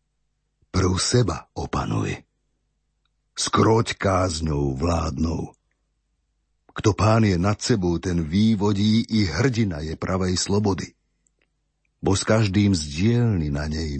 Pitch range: 95-135 Hz